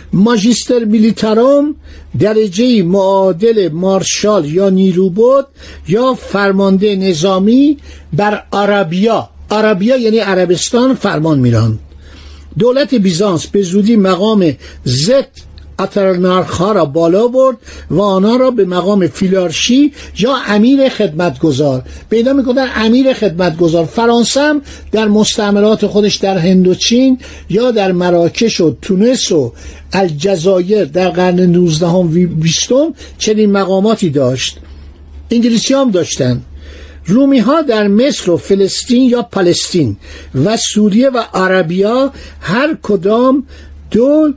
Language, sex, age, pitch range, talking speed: Persian, male, 60-79, 175-235 Hz, 105 wpm